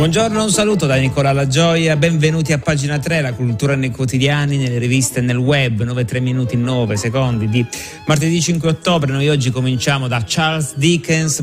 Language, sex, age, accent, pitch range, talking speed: Italian, male, 30-49, native, 115-145 Hz, 180 wpm